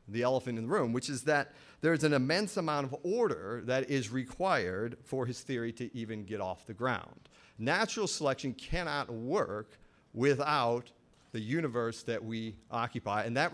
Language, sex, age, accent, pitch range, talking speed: English, male, 40-59, American, 110-140 Hz, 175 wpm